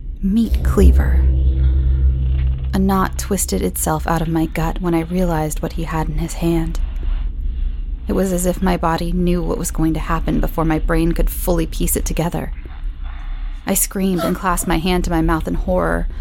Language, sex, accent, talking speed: English, female, American, 185 wpm